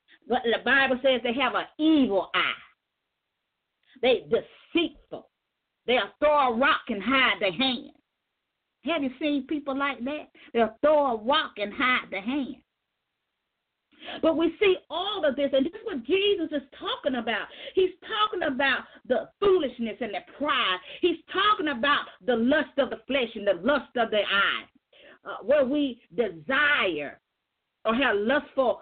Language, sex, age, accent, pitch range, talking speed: English, female, 40-59, American, 250-345 Hz, 160 wpm